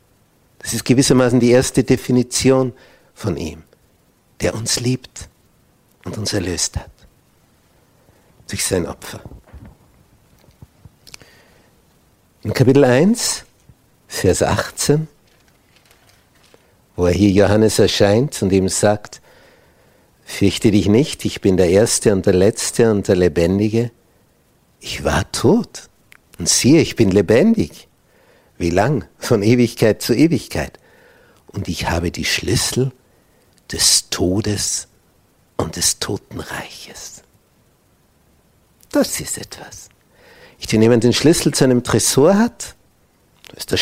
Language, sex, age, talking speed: German, male, 60-79, 110 wpm